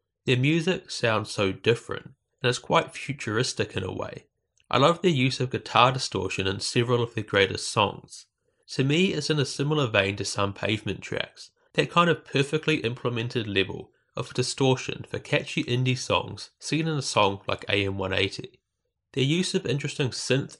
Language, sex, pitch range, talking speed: English, male, 100-145 Hz, 170 wpm